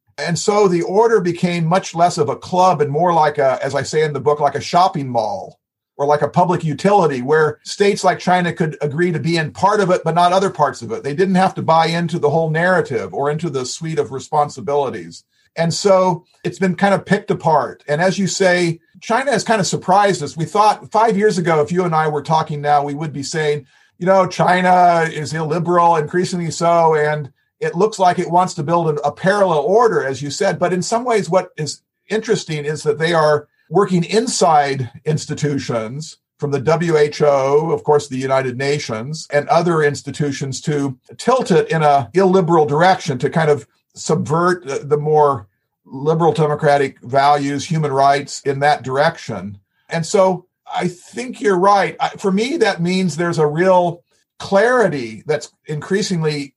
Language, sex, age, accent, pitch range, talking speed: English, male, 50-69, American, 145-180 Hz, 190 wpm